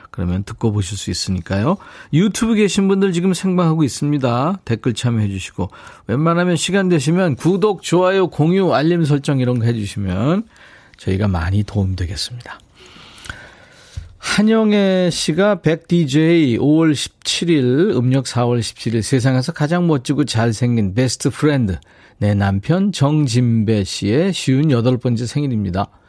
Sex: male